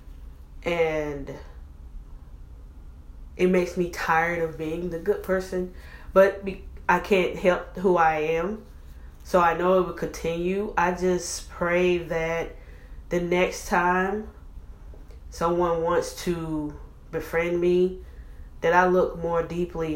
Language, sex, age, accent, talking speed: English, female, 20-39, American, 120 wpm